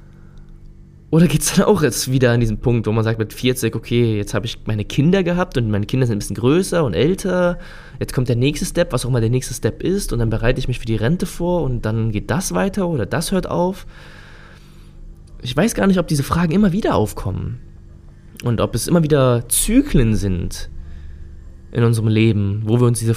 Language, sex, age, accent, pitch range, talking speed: German, male, 20-39, German, 105-145 Hz, 220 wpm